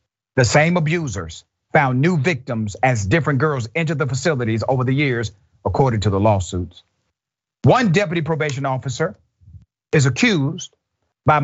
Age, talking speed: 40-59, 135 wpm